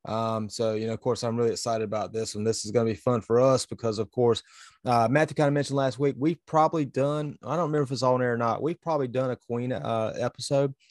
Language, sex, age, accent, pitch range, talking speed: English, male, 30-49, American, 120-150 Hz, 270 wpm